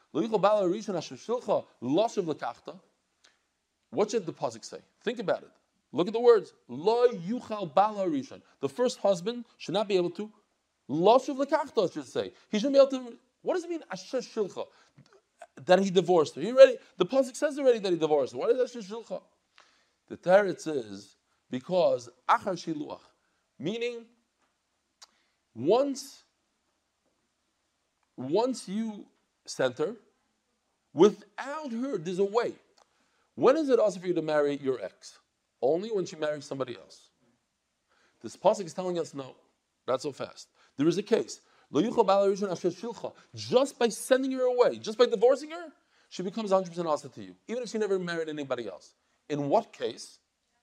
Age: 50-69